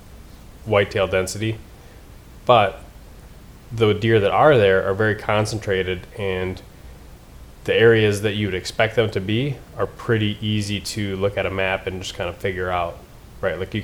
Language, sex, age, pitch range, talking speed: English, male, 20-39, 95-110 Hz, 170 wpm